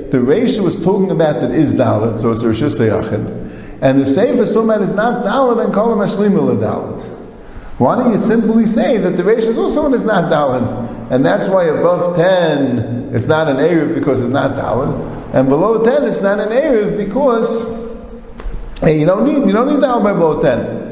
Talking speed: 190 wpm